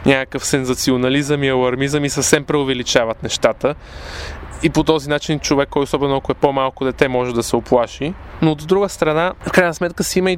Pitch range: 130-155 Hz